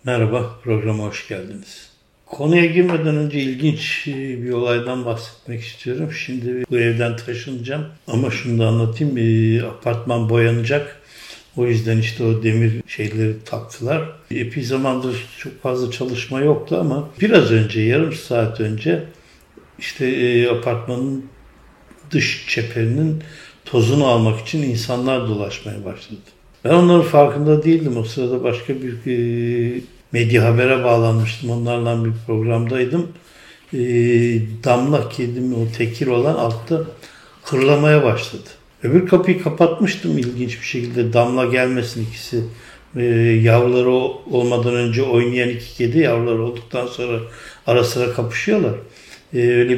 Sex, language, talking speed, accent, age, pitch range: male, Turkish, 115 wpm, native, 60-79, 115-135 Hz